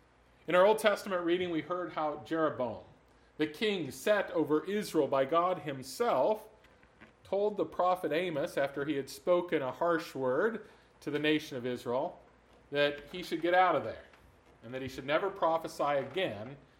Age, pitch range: 40-59, 135-180 Hz